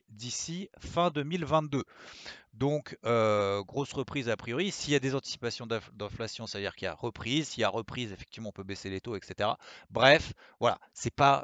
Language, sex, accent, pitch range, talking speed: French, male, French, 110-150 Hz, 185 wpm